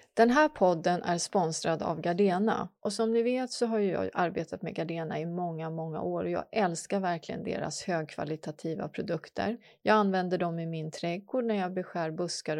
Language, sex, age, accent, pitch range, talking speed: English, female, 30-49, Swedish, 170-230 Hz, 180 wpm